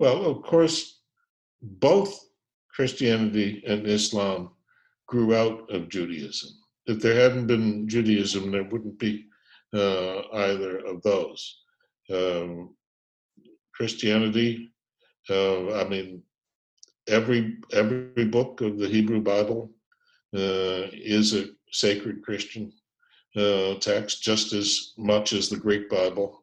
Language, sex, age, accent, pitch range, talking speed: English, male, 60-79, American, 100-120 Hz, 110 wpm